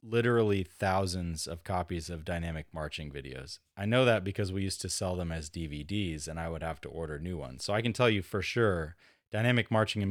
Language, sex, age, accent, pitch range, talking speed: English, male, 30-49, American, 90-110 Hz, 220 wpm